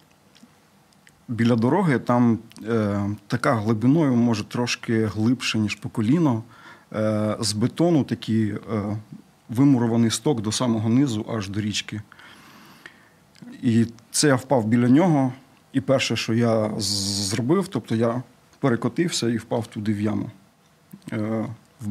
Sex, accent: male, native